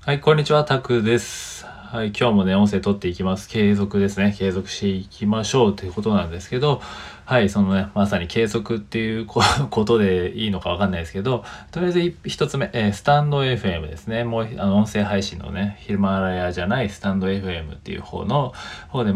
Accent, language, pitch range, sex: native, Japanese, 95-115 Hz, male